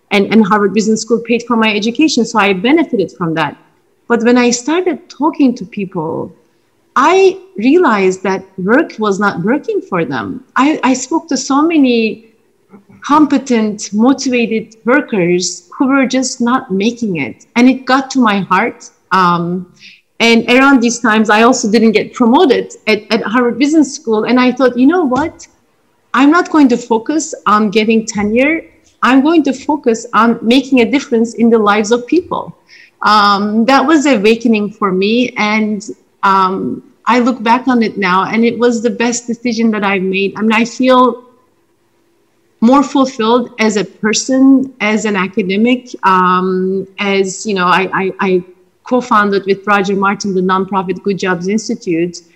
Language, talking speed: English, 165 wpm